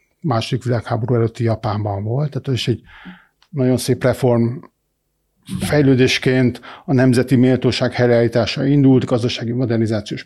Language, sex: Hungarian, male